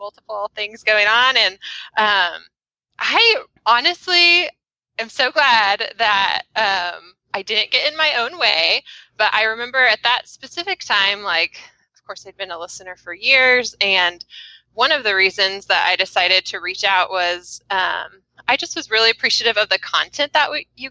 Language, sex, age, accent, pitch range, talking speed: English, female, 20-39, American, 195-270 Hz, 170 wpm